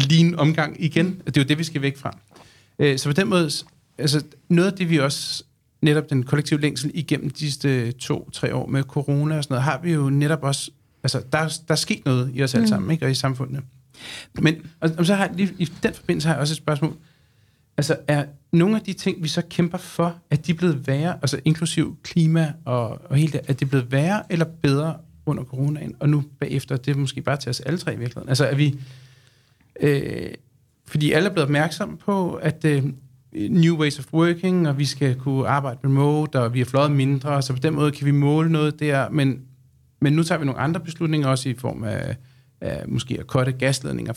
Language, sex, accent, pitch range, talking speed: Danish, male, native, 135-160 Hz, 220 wpm